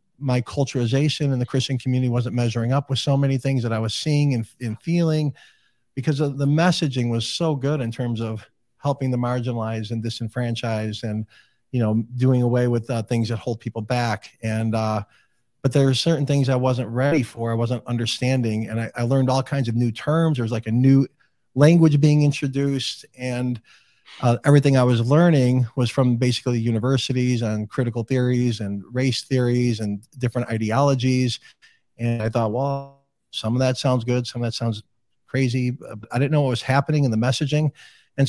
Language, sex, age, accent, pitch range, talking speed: English, male, 40-59, American, 115-140 Hz, 190 wpm